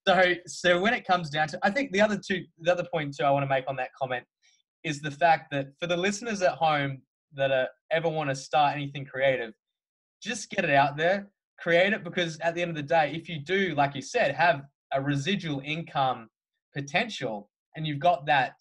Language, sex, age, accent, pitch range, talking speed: English, male, 20-39, Australian, 135-175 Hz, 225 wpm